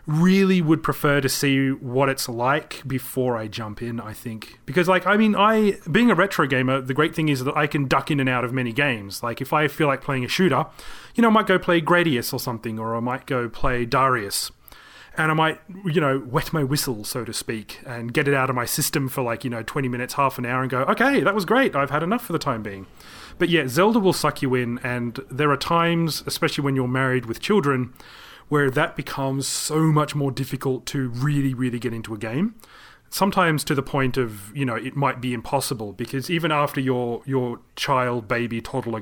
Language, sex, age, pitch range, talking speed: English, male, 30-49, 125-155 Hz, 230 wpm